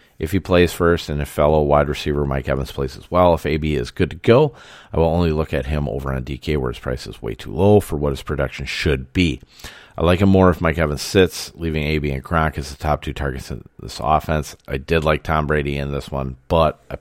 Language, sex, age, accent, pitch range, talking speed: English, male, 40-59, American, 70-85 Hz, 255 wpm